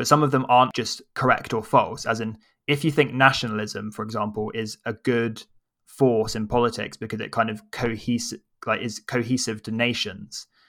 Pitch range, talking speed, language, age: 110-120 Hz, 185 wpm, English, 20-39